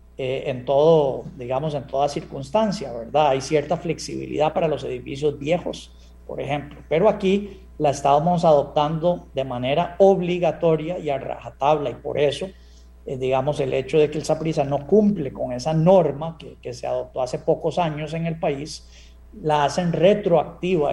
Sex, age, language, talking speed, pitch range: male, 40-59, Spanish, 165 wpm, 135-165 Hz